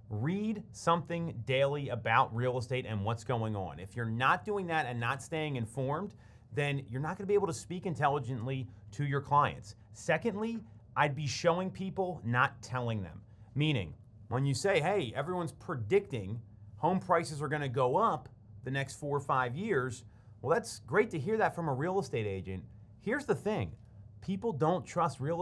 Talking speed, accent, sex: 180 wpm, American, male